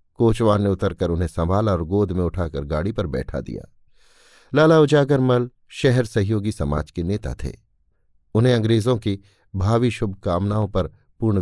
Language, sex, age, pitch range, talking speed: Hindi, male, 50-69, 95-125 Hz, 160 wpm